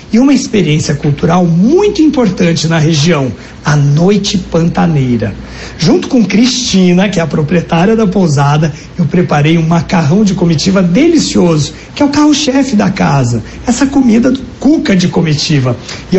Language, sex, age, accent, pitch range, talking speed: Portuguese, male, 60-79, Brazilian, 160-220 Hz, 150 wpm